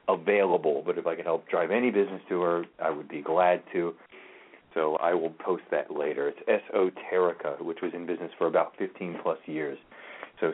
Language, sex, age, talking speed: English, male, 40-59, 195 wpm